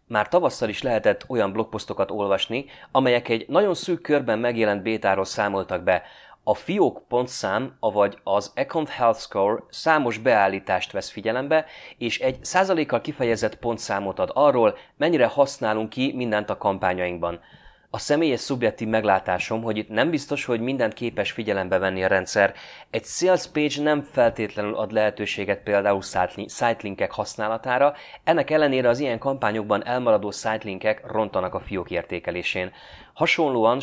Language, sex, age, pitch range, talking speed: Hungarian, male, 30-49, 100-125 Hz, 140 wpm